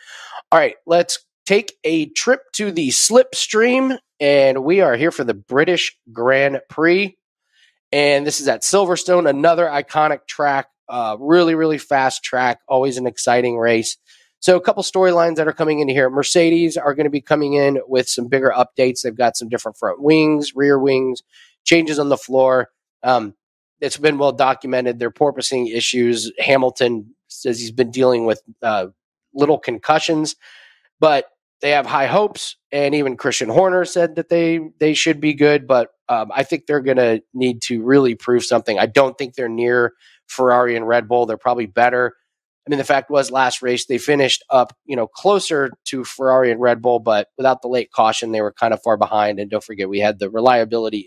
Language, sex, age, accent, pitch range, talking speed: English, male, 20-39, American, 120-155 Hz, 190 wpm